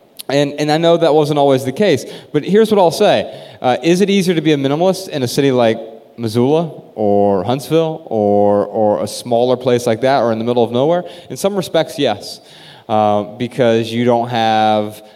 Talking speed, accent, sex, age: 200 wpm, American, male, 30-49